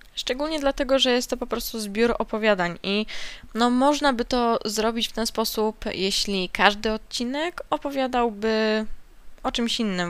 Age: 10-29